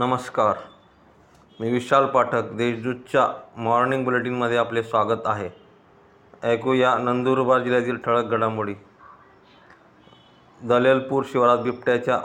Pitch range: 115-120 Hz